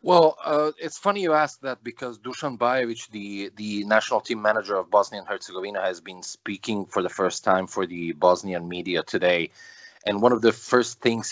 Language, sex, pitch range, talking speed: English, male, 95-115 Hz, 195 wpm